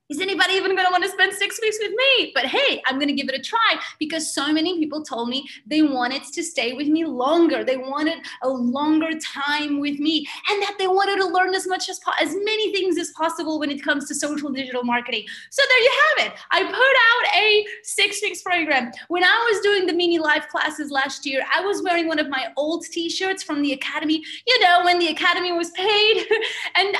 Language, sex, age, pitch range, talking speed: English, female, 30-49, 275-370 Hz, 230 wpm